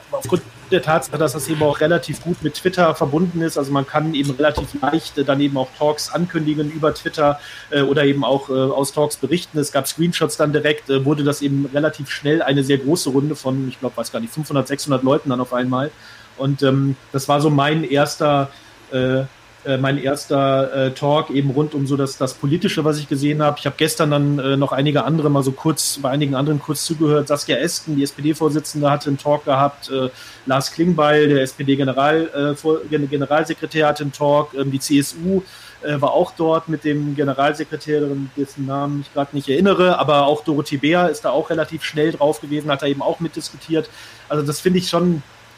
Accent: German